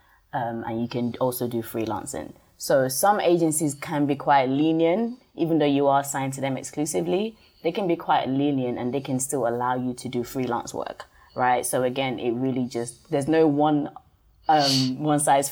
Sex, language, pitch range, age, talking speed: female, English, 125-145 Hz, 20-39, 190 wpm